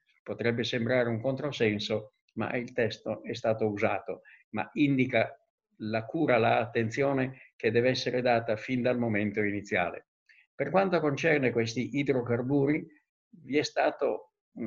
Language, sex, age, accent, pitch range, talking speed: Italian, male, 50-69, native, 115-145 Hz, 125 wpm